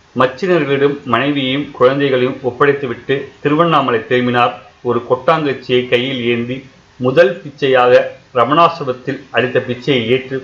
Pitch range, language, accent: 125-145 Hz, Tamil, native